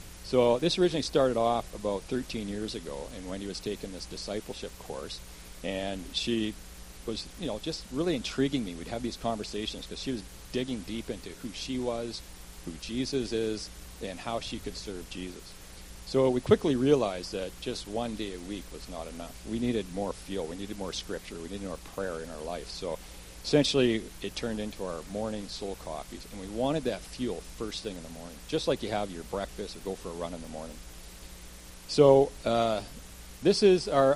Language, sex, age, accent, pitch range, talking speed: English, male, 50-69, American, 85-125 Hz, 200 wpm